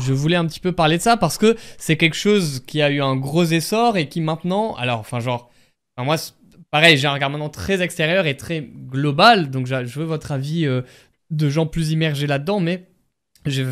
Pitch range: 130-175 Hz